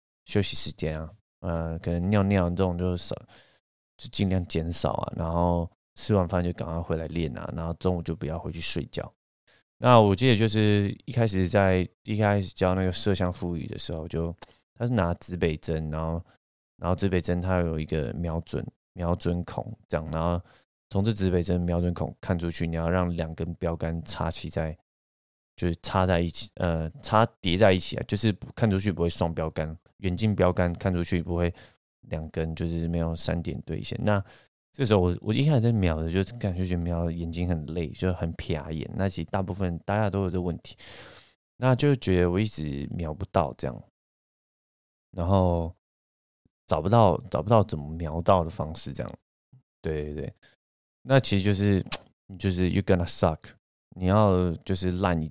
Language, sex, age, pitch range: Chinese, male, 20-39, 80-95 Hz